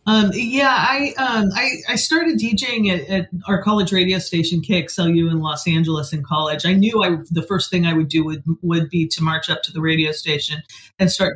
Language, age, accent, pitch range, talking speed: English, 30-49, American, 155-185 Hz, 215 wpm